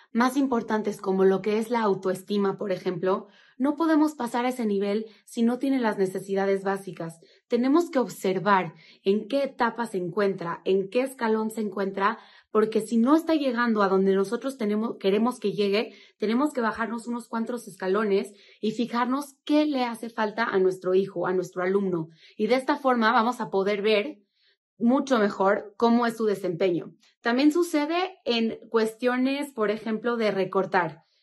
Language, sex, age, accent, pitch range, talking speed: Spanish, female, 30-49, Mexican, 195-245 Hz, 165 wpm